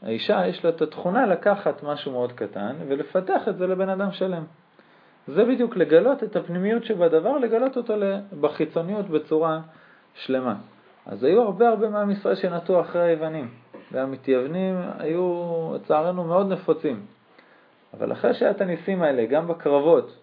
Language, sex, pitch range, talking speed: Hebrew, male, 130-190 Hz, 140 wpm